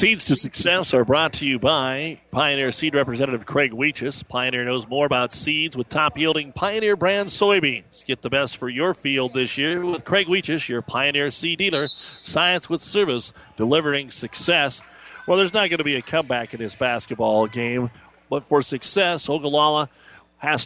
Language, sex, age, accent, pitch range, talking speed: English, male, 40-59, American, 130-155 Hz, 175 wpm